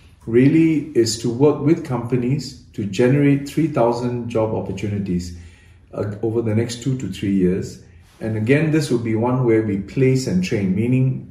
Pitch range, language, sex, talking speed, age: 95-135 Hz, English, male, 165 wpm, 40-59